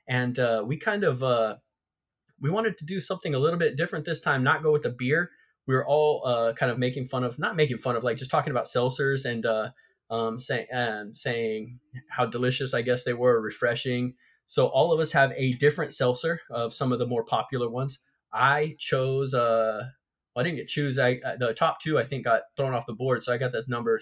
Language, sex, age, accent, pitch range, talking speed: English, male, 20-39, American, 125-150 Hz, 220 wpm